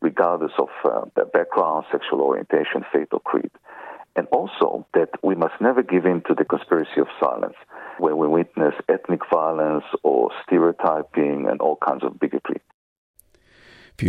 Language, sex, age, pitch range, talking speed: Arabic, male, 50-69, 90-110 Hz, 150 wpm